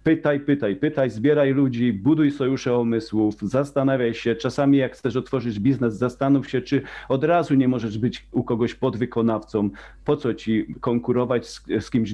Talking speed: 165 wpm